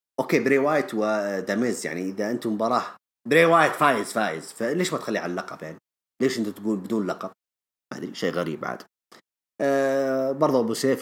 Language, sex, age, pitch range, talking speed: English, male, 30-49, 110-180 Hz, 160 wpm